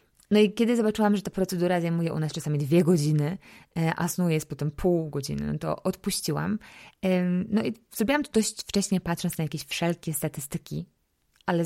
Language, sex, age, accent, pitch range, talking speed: Polish, female, 20-39, native, 150-185 Hz, 175 wpm